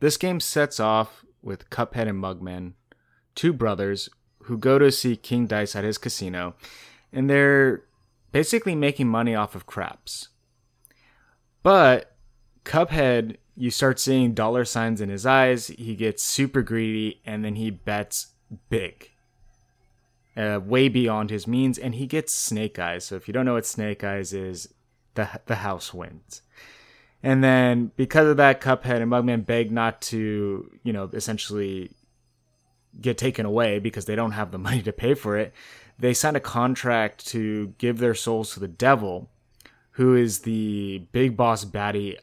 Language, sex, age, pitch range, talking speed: English, male, 20-39, 105-125 Hz, 160 wpm